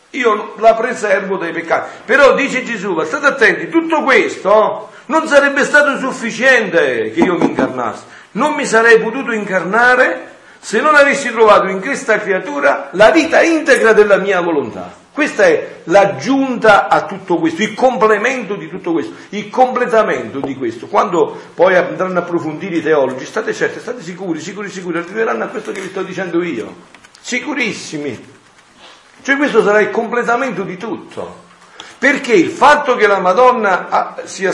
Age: 50-69